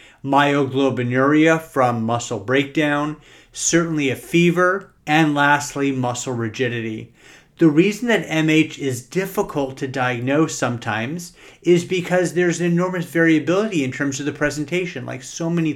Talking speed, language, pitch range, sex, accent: 130 wpm, English, 130-155 Hz, male, American